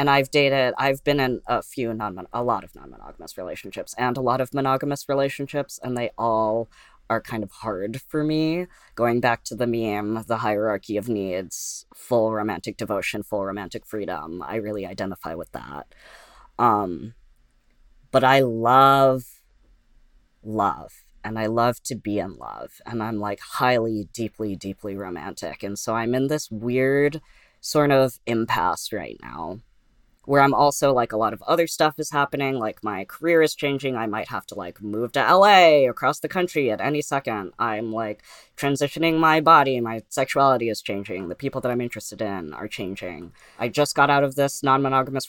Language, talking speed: English, 175 wpm